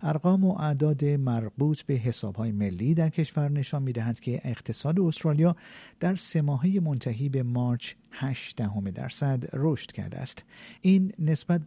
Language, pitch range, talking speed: Persian, 115-155 Hz, 155 wpm